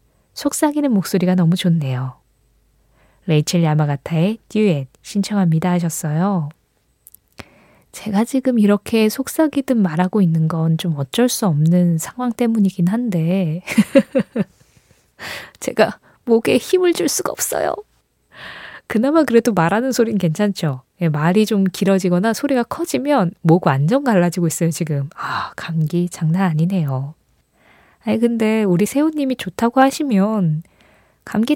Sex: female